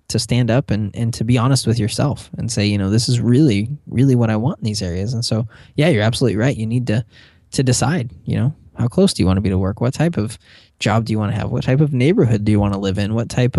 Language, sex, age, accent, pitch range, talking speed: English, male, 20-39, American, 105-130 Hz, 295 wpm